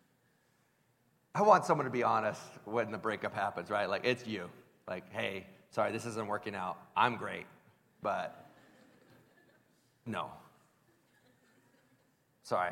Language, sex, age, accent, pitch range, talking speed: English, male, 40-59, American, 130-195 Hz, 125 wpm